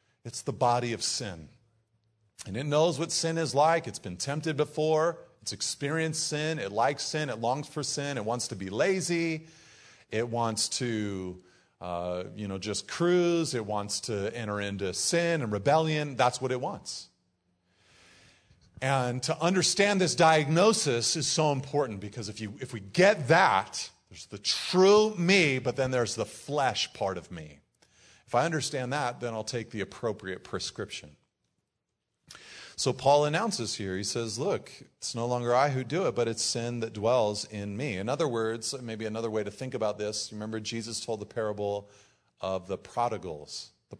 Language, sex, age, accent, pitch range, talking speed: English, male, 40-59, American, 105-145 Hz, 175 wpm